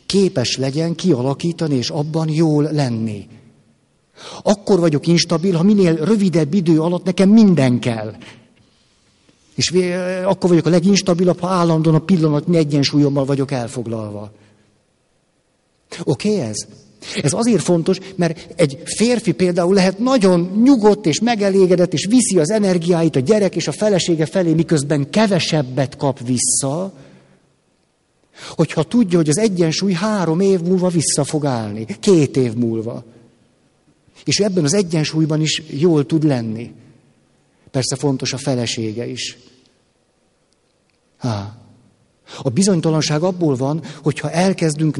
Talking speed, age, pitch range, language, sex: 120 wpm, 60-79, 130-180 Hz, Hungarian, male